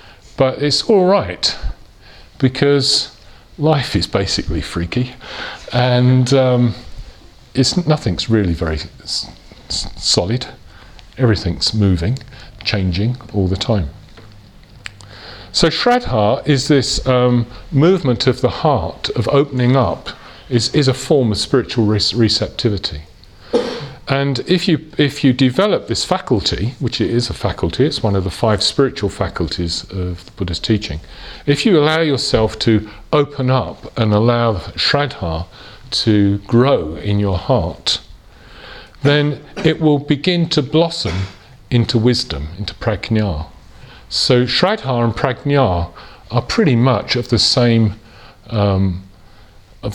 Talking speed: 120 wpm